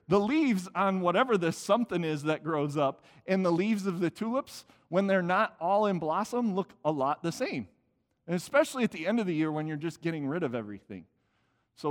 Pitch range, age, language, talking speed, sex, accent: 150-200 Hz, 40-59, English, 215 wpm, male, American